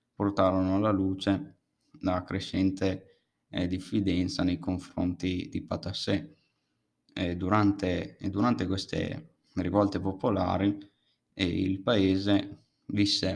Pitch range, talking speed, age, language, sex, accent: 95-100 Hz, 90 wpm, 20-39, Italian, male, native